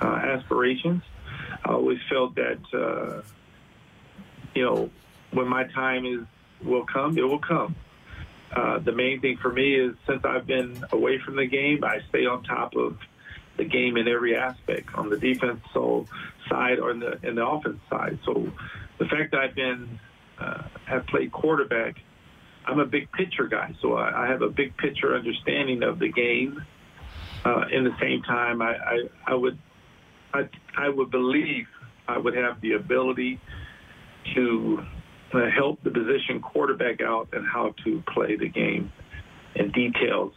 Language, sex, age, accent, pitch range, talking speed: English, male, 40-59, American, 115-130 Hz, 165 wpm